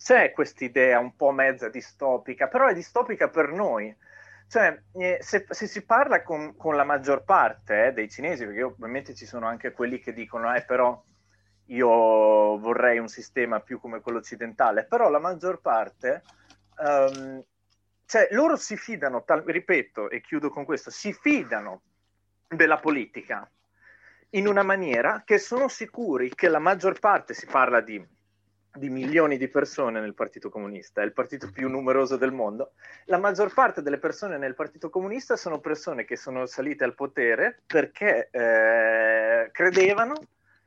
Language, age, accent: Italian, 30-49, native